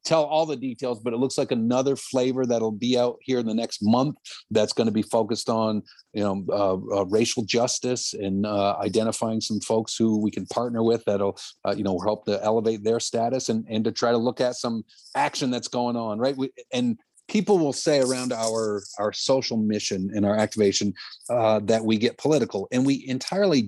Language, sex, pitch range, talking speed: English, male, 110-135 Hz, 210 wpm